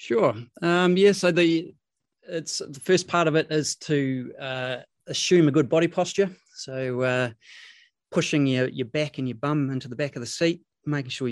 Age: 30-49